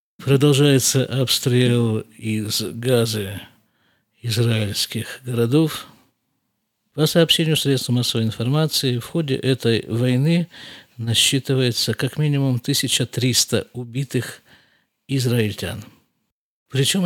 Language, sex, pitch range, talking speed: Russian, male, 110-135 Hz, 75 wpm